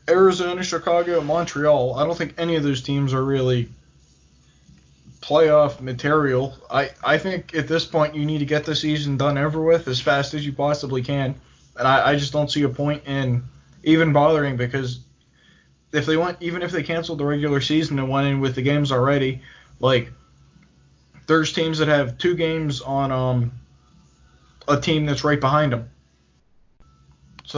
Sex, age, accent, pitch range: male, 20-39, American, 125-150 Hz